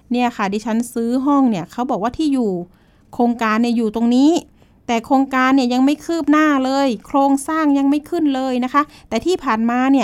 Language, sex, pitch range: Thai, female, 220-275 Hz